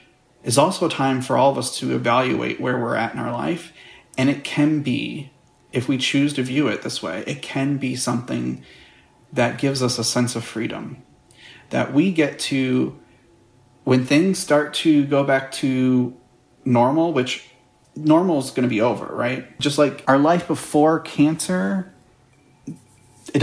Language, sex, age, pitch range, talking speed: English, male, 30-49, 125-155 Hz, 170 wpm